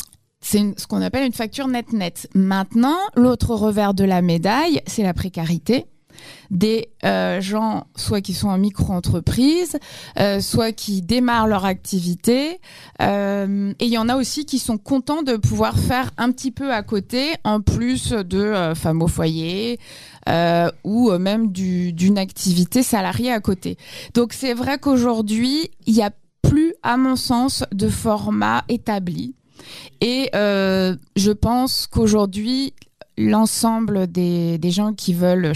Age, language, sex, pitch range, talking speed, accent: 20-39, French, female, 185-240 Hz, 150 wpm, French